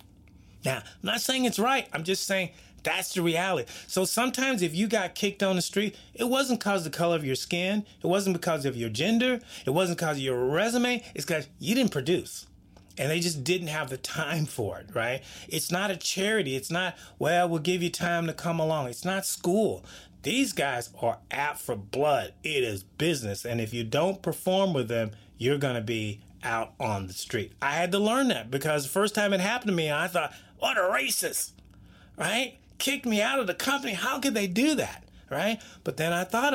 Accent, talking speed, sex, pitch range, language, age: American, 220 wpm, male, 125-195 Hz, English, 30-49